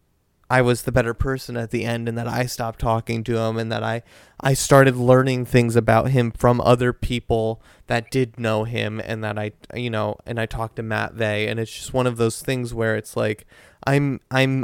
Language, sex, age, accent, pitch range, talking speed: English, male, 20-39, American, 110-130 Hz, 220 wpm